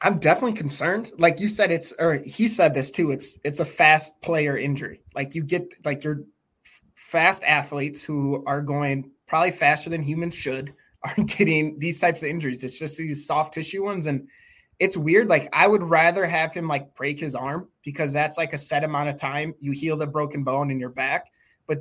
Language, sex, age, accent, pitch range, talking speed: English, male, 20-39, American, 145-170 Hz, 205 wpm